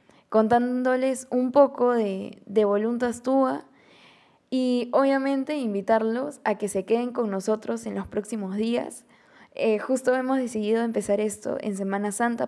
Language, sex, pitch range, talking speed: Spanish, female, 205-245 Hz, 140 wpm